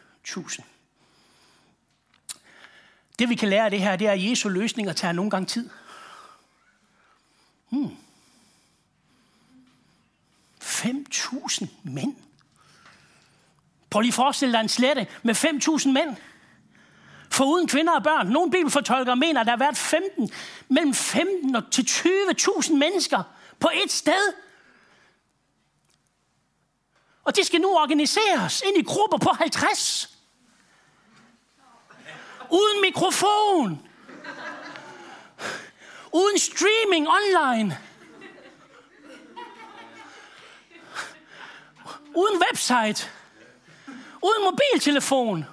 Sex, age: male, 60-79